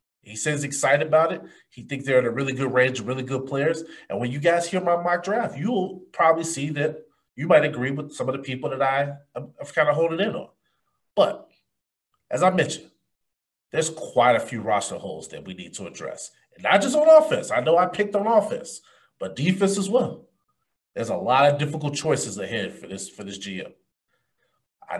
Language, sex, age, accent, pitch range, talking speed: English, male, 30-49, American, 125-160 Hz, 215 wpm